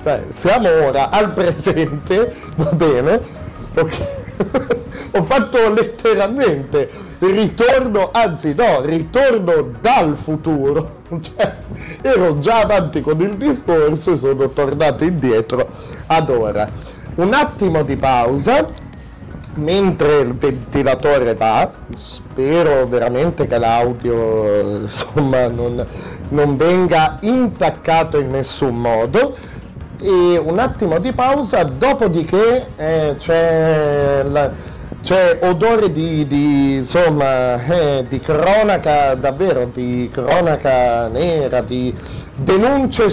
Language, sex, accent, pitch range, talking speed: Italian, male, native, 125-185 Hz, 100 wpm